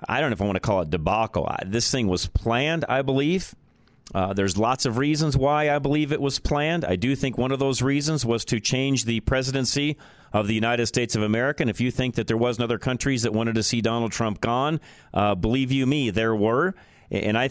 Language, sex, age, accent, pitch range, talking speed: English, male, 40-59, American, 115-155 Hz, 235 wpm